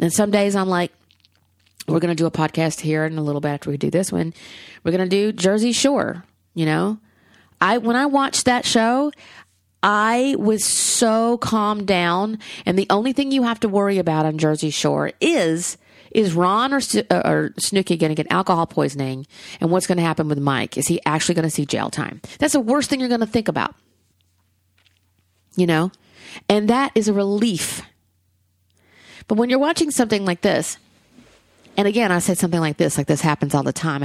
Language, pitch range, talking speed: English, 130-195 Hz, 200 wpm